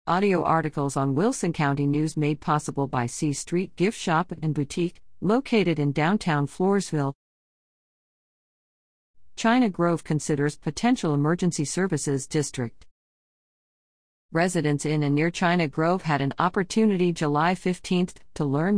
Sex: female